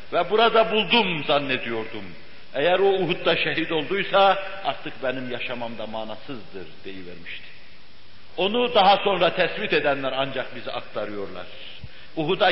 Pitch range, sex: 125-205 Hz, male